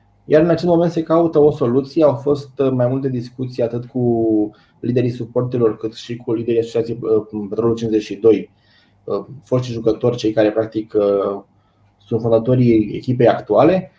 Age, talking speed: 20-39, 140 wpm